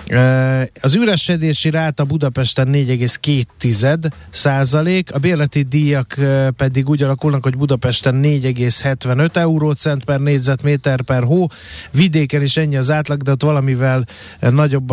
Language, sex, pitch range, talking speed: Hungarian, male, 130-155 Hz, 115 wpm